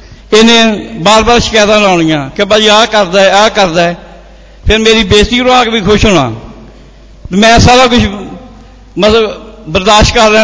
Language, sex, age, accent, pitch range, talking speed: Hindi, male, 60-79, native, 190-225 Hz, 150 wpm